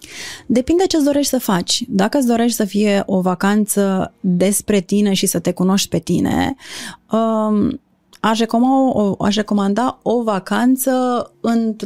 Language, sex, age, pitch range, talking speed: Romanian, female, 30-49, 190-235 Hz, 145 wpm